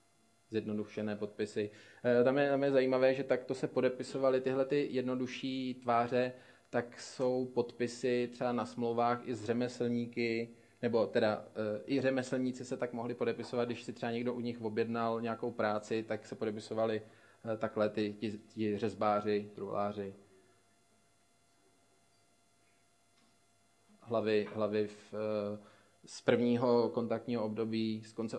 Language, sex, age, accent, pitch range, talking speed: Czech, male, 20-39, native, 105-120 Hz, 135 wpm